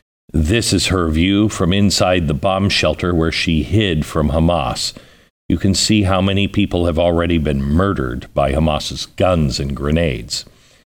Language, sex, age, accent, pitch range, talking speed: English, male, 50-69, American, 80-110 Hz, 160 wpm